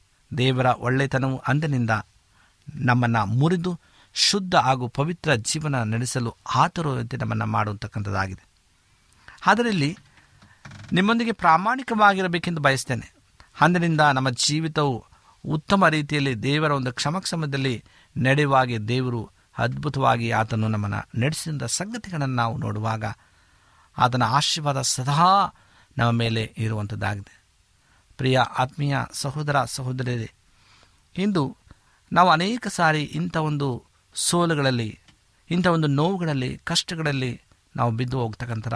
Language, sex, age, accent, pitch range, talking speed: Kannada, male, 50-69, native, 110-155 Hz, 90 wpm